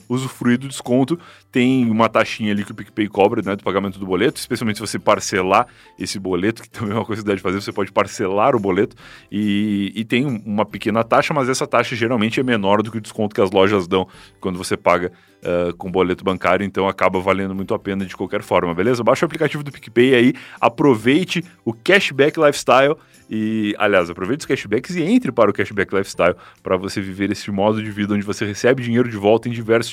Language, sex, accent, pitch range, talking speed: Portuguese, male, Brazilian, 100-120 Hz, 215 wpm